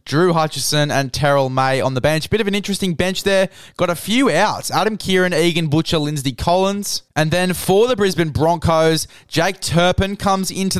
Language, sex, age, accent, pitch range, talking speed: English, male, 20-39, Australian, 140-170 Hz, 190 wpm